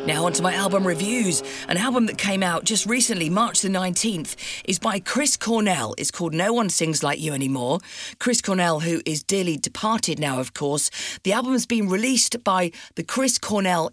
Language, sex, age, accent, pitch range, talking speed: English, female, 40-59, British, 155-215 Hz, 200 wpm